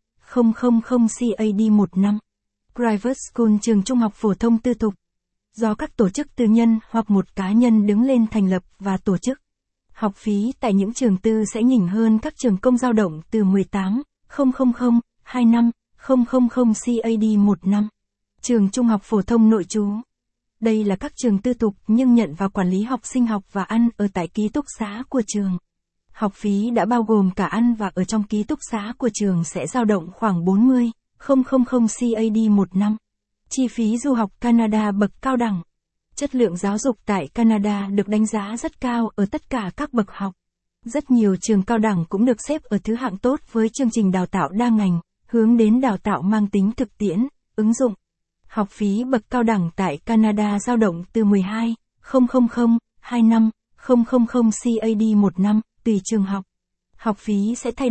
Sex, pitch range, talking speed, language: female, 205-240 Hz, 185 wpm, Vietnamese